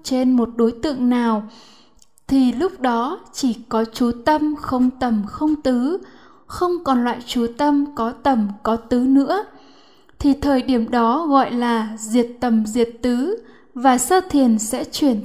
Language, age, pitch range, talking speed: Vietnamese, 10-29, 235-280 Hz, 160 wpm